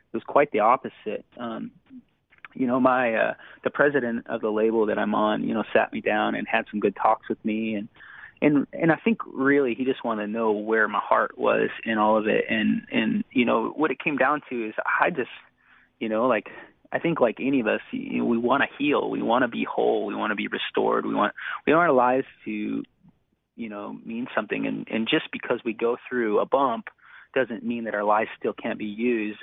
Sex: male